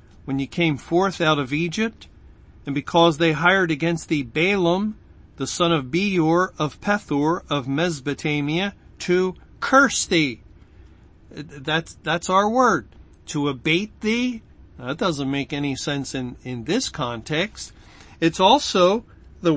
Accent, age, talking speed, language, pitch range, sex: American, 50-69, 140 wpm, English, 140-185 Hz, male